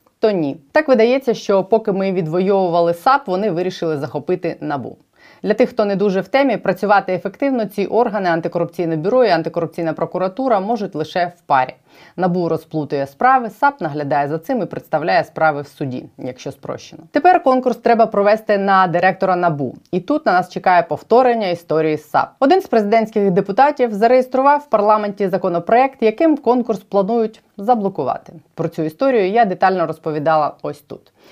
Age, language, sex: 30-49, Ukrainian, female